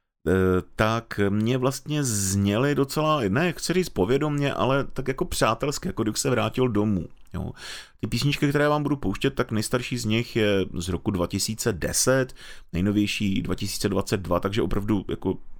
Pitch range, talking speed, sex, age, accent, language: 95-115 Hz, 145 wpm, male, 30-49, native, Czech